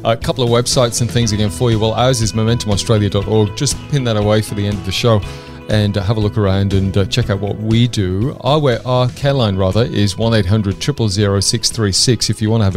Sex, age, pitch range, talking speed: male, 30-49, 100-125 Hz, 220 wpm